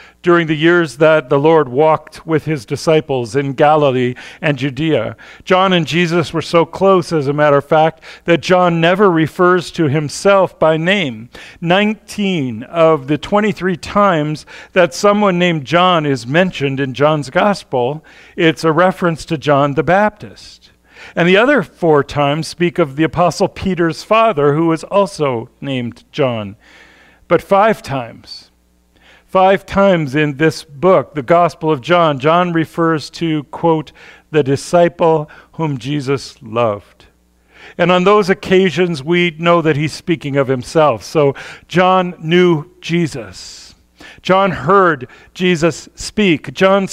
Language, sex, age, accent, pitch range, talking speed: English, male, 50-69, American, 150-180 Hz, 140 wpm